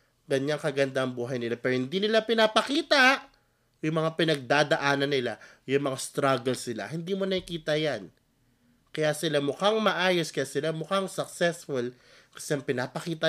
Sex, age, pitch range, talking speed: male, 20-39, 125-165 Hz, 145 wpm